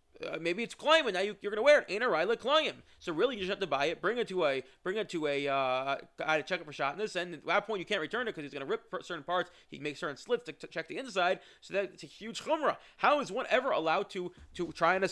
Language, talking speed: English, 305 wpm